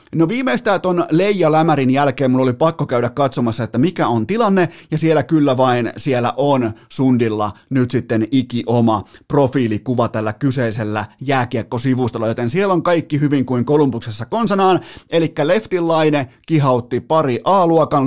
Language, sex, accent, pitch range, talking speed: Finnish, male, native, 120-155 Hz, 140 wpm